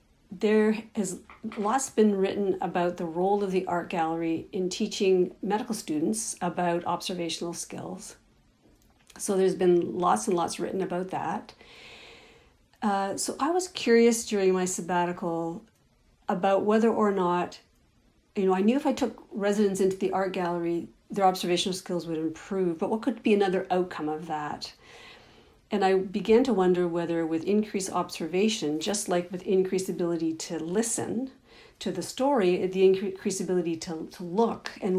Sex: female